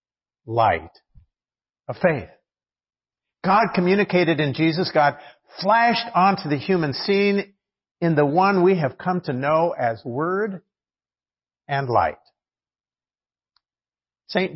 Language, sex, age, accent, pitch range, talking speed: English, male, 50-69, American, 125-185 Hz, 105 wpm